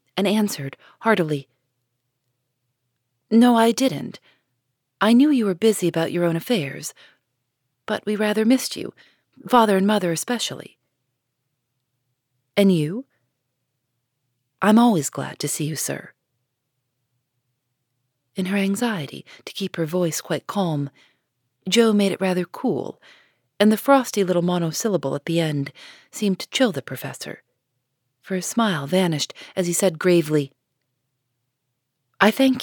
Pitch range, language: 130-205 Hz, English